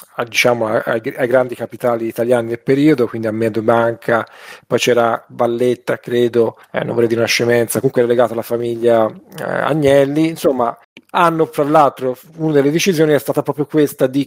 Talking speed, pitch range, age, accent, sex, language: 175 wpm, 120-140 Hz, 40-59, native, male, Italian